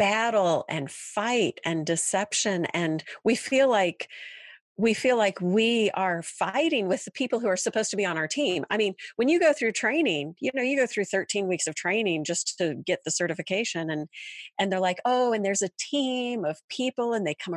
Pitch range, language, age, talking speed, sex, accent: 185-255 Hz, English, 40-59, 210 wpm, female, American